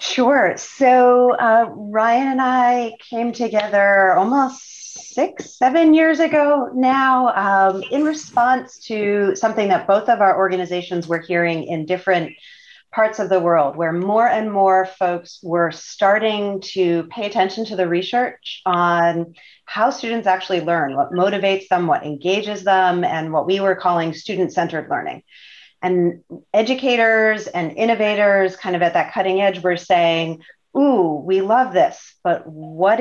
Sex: female